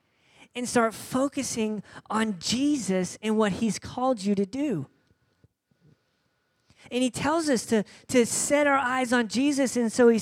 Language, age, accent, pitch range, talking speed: English, 40-59, American, 215-270 Hz, 155 wpm